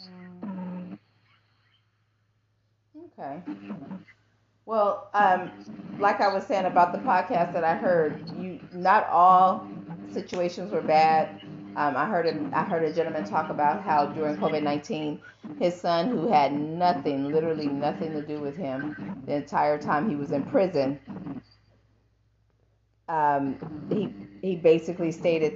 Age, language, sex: 40-59, English, female